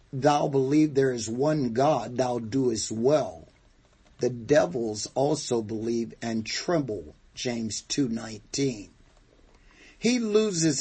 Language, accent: English, American